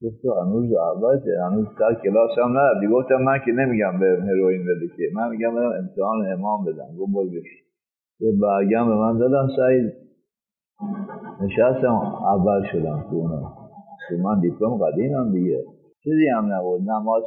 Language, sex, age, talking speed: Persian, male, 50-69, 145 wpm